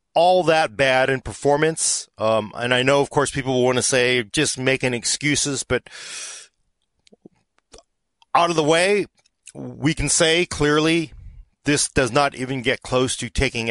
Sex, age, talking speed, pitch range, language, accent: male, 40-59, 155 wpm, 110-145 Hz, English, American